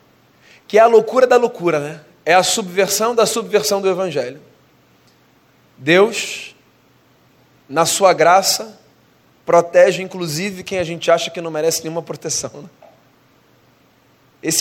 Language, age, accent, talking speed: Portuguese, 20-39, Brazilian, 125 wpm